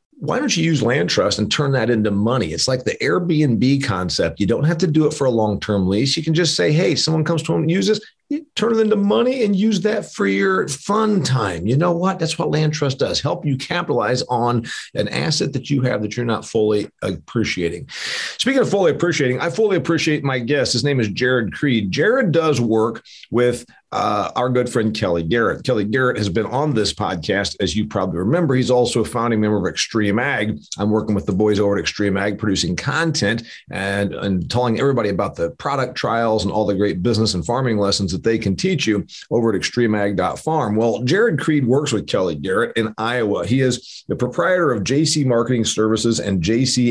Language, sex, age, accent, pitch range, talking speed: English, male, 40-59, American, 105-150 Hz, 215 wpm